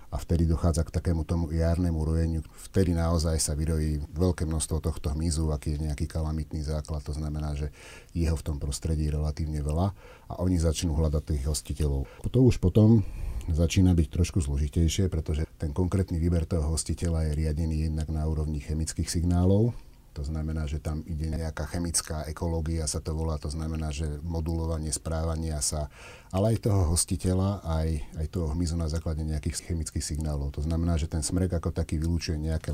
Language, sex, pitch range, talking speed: Slovak, male, 75-85 Hz, 180 wpm